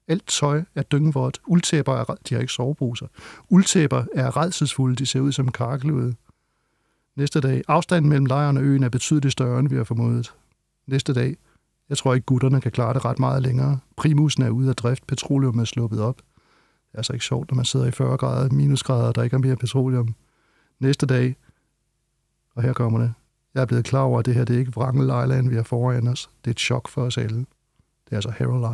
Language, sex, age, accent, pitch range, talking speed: Danish, male, 60-79, native, 125-145 Hz, 220 wpm